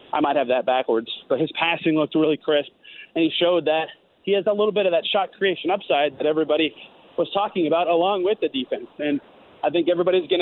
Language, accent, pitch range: English, American, 155-185 Hz